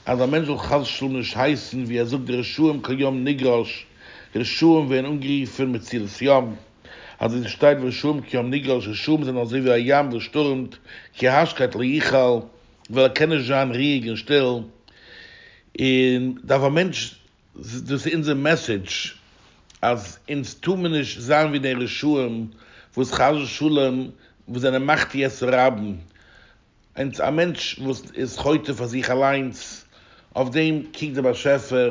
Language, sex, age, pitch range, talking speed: English, male, 60-79, 120-145 Hz, 85 wpm